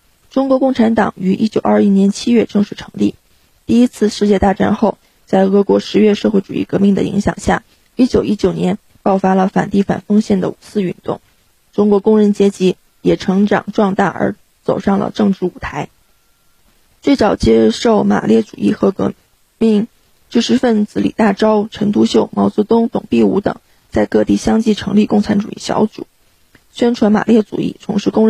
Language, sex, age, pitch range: Chinese, female, 20-39, 195-220 Hz